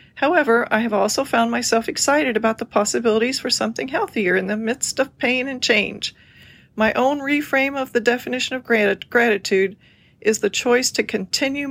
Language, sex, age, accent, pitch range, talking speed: English, female, 40-59, American, 210-250 Hz, 170 wpm